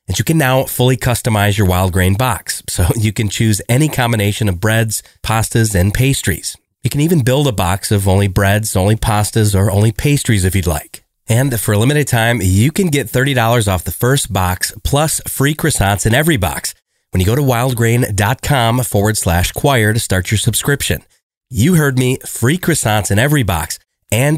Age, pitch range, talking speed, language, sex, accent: 30-49, 95-125 Hz, 190 wpm, English, male, American